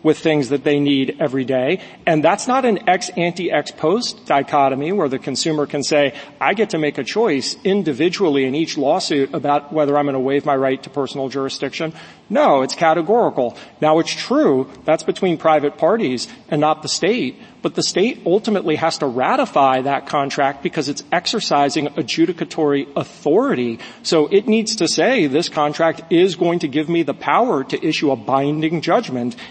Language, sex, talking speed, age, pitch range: English, male, 175 wpm, 40-59, 140-170 Hz